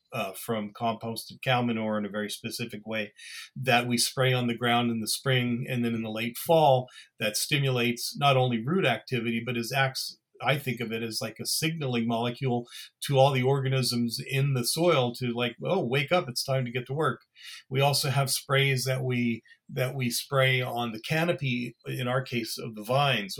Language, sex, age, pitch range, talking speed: English, male, 40-59, 115-135 Hz, 205 wpm